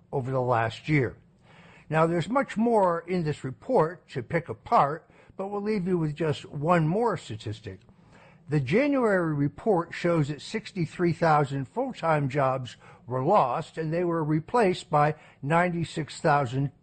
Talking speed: 140 wpm